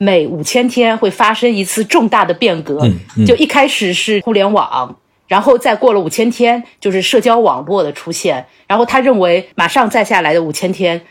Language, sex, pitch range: Chinese, female, 175-255 Hz